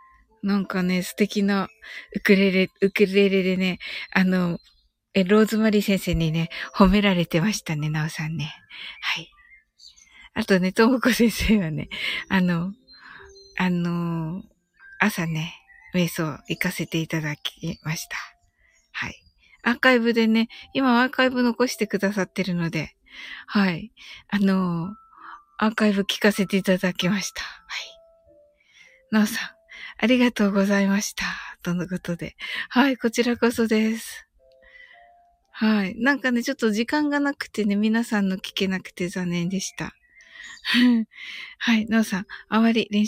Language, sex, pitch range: Japanese, female, 180-235 Hz